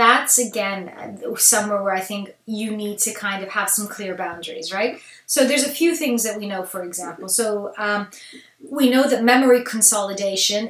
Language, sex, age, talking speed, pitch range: English, female, 20-39, 185 wpm, 210-270 Hz